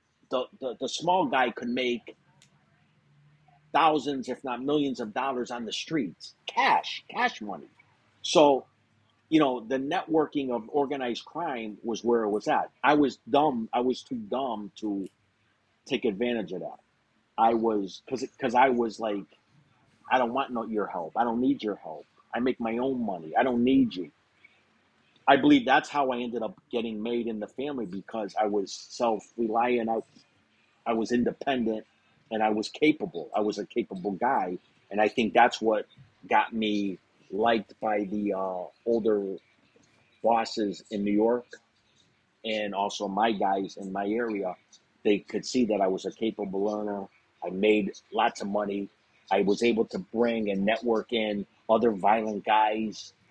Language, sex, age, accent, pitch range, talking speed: English, male, 40-59, American, 105-120 Hz, 165 wpm